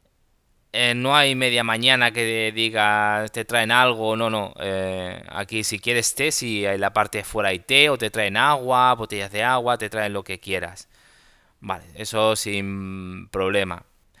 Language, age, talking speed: Spanish, 20-39, 180 wpm